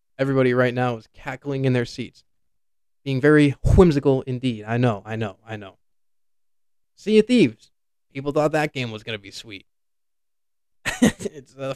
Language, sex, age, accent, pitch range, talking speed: English, male, 20-39, American, 120-195 Hz, 160 wpm